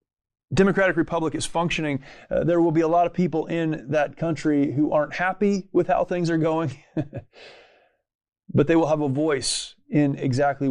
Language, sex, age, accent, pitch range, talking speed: English, male, 30-49, American, 135-160 Hz, 175 wpm